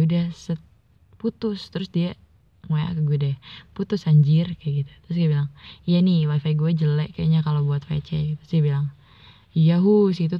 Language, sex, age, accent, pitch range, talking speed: Indonesian, female, 20-39, native, 145-160 Hz, 165 wpm